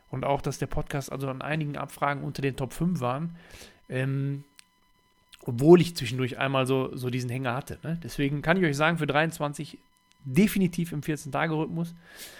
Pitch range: 125-155 Hz